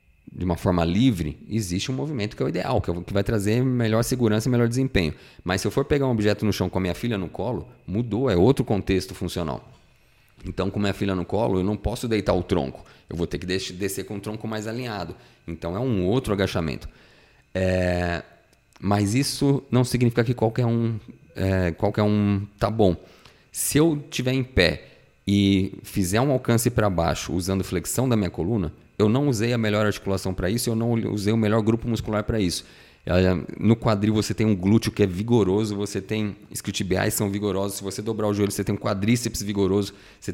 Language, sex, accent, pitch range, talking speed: Portuguese, male, Brazilian, 95-115 Hz, 210 wpm